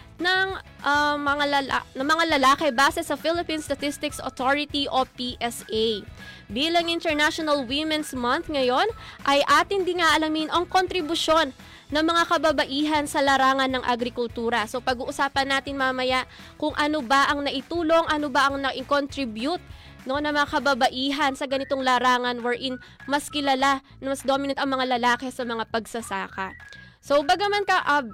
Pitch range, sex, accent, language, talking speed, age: 260-315 Hz, female, native, Filipino, 145 wpm, 20-39